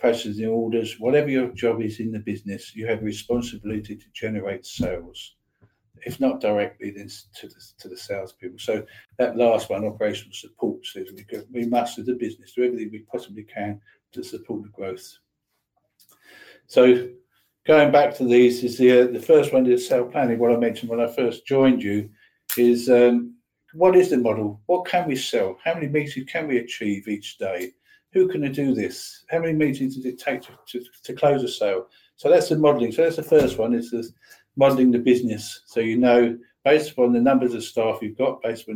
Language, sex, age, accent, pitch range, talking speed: English, male, 50-69, British, 110-135 Hz, 200 wpm